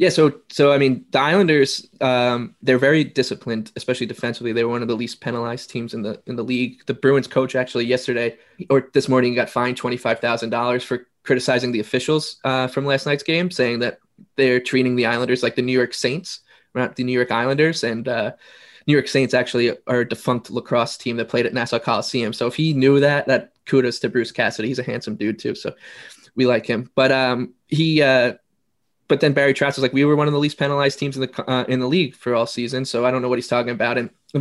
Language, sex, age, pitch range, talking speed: English, male, 20-39, 120-135 Hz, 230 wpm